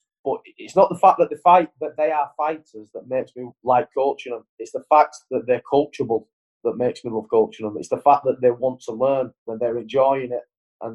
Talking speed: 235 wpm